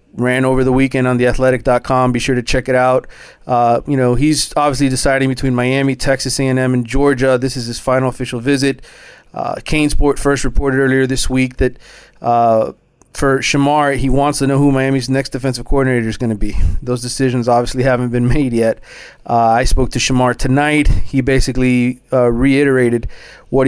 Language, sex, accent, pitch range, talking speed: English, male, American, 120-135 Hz, 185 wpm